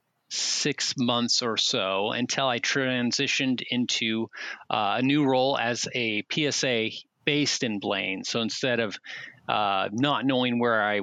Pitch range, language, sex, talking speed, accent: 110-135 Hz, English, male, 140 wpm, American